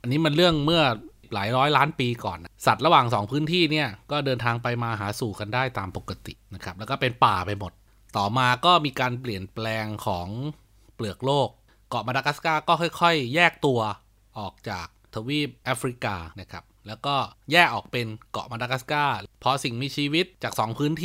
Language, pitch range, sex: Thai, 110-155 Hz, male